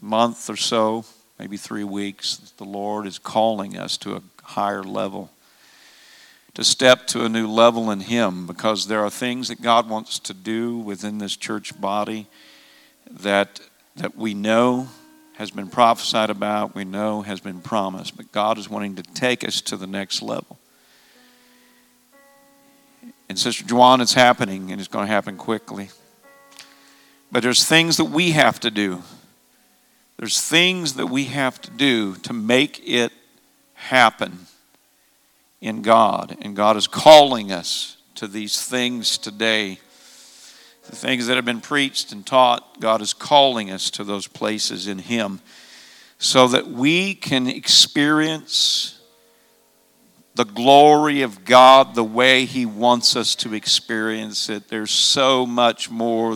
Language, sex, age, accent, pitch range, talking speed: English, male, 50-69, American, 105-130 Hz, 150 wpm